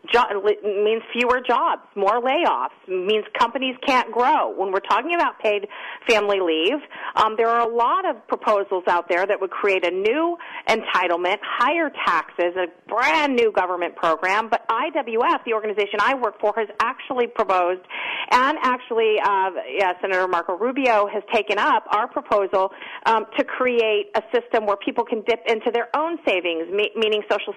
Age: 40-59